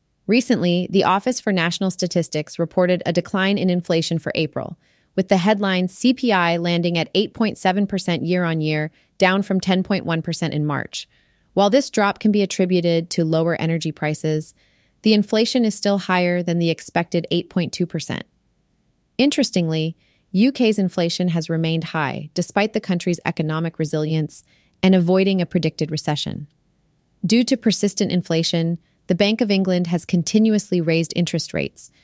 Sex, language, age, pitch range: female, English, 30-49, 165-195 Hz